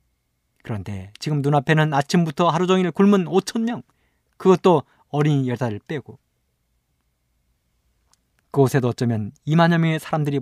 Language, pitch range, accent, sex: Korean, 100-165 Hz, native, male